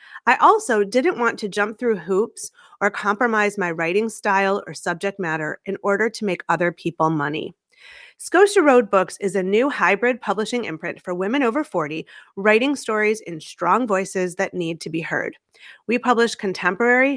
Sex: female